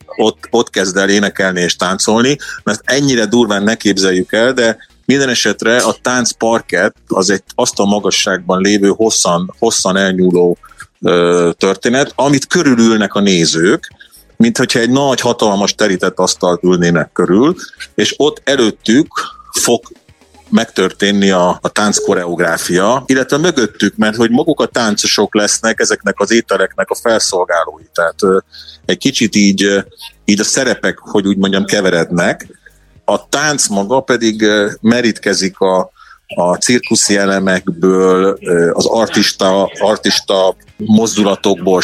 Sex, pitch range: male, 95-115 Hz